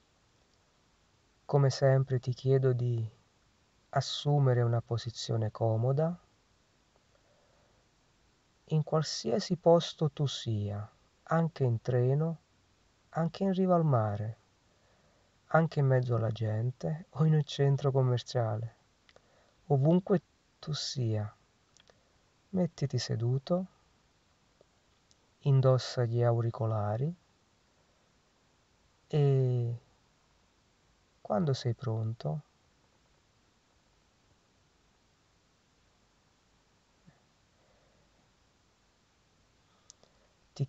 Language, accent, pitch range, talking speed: Italian, native, 110-145 Hz, 65 wpm